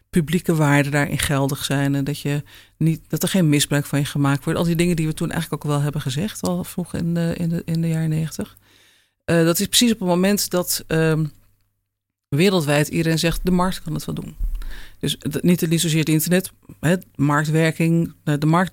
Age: 40-59